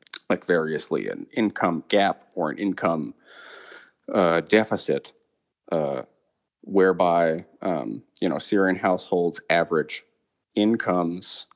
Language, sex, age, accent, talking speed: English, male, 30-49, American, 100 wpm